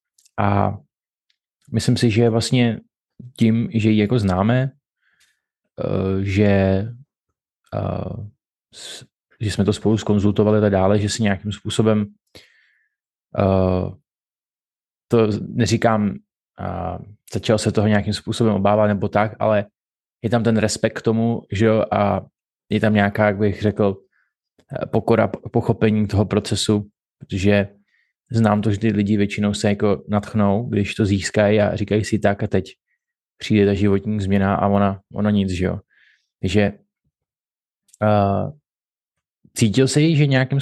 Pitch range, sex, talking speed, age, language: 100-110 Hz, male, 130 wpm, 20-39, Czech